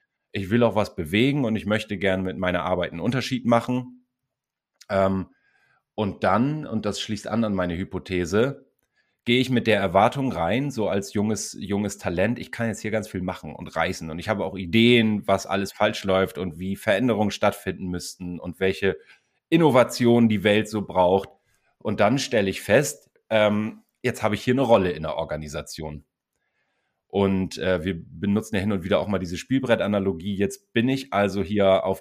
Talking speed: 180 wpm